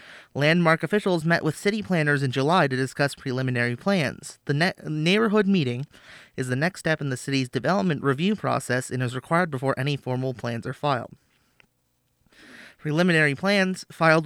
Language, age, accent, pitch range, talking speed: English, 30-49, American, 135-180 Hz, 155 wpm